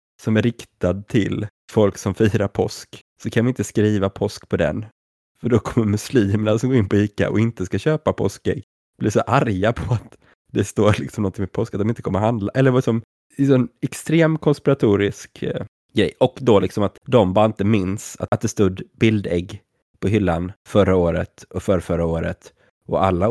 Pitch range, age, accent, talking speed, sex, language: 95-125 Hz, 30-49, native, 200 wpm, male, Swedish